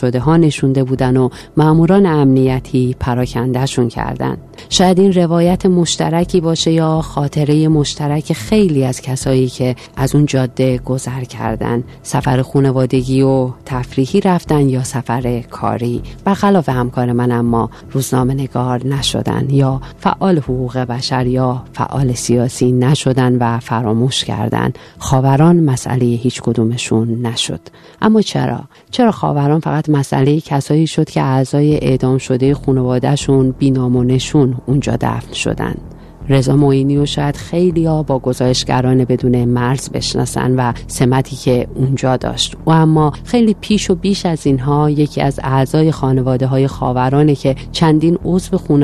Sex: female